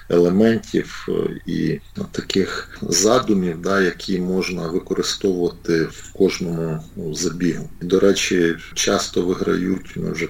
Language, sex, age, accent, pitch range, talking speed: Ukrainian, male, 50-69, native, 90-100 Hz, 105 wpm